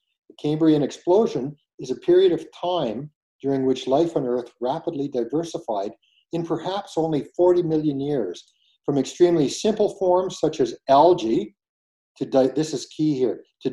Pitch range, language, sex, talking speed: 130-175 Hz, English, male, 155 wpm